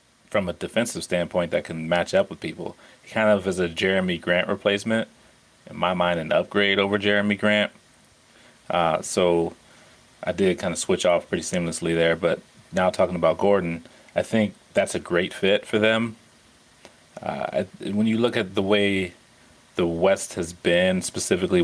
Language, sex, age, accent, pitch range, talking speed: English, male, 30-49, American, 85-105 Hz, 170 wpm